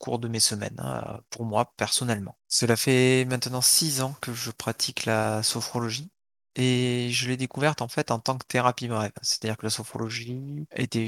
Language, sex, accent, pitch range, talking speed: French, male, French, 115-130 Hz, 180 wpm